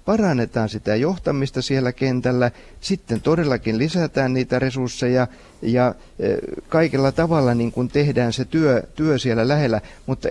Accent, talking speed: native, 130 wpm